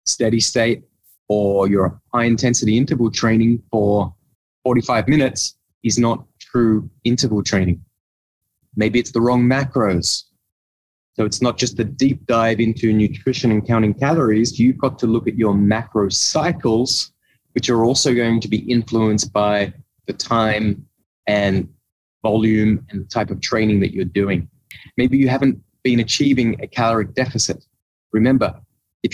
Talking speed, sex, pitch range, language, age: 145 wpm, male, 105-125 Hz, English, 20-39